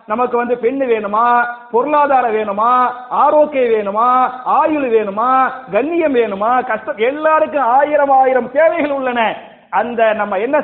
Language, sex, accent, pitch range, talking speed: English, male, Indian, 210-275 Hz, 120 wpm